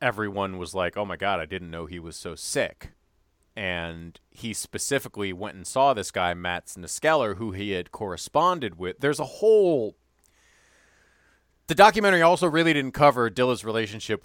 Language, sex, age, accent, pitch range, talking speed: English, male, 30-49, American, 90-115 Hz, 165 wpm